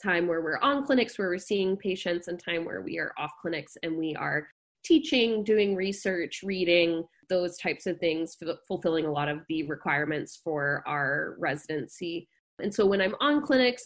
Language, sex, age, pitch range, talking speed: English, female, 20-39, 165-200 Hz, 180 wpm